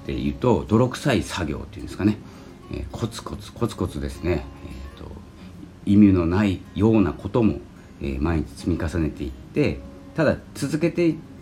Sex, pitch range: male, 75-105 Hz